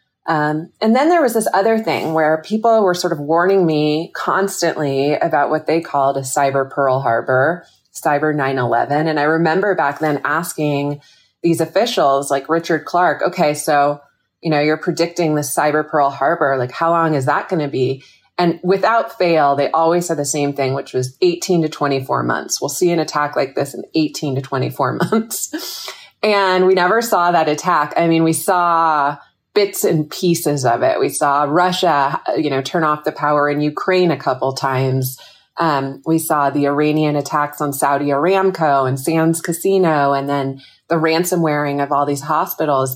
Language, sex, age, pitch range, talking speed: English, female, 30-49, 140-175 Hz, 185 wpm